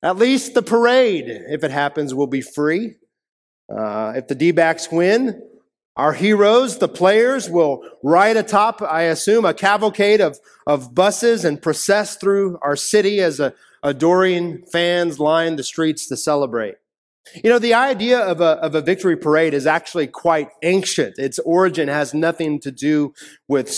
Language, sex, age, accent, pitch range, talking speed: English, male, 30-49, American, 150-185 Hz, 155 wpm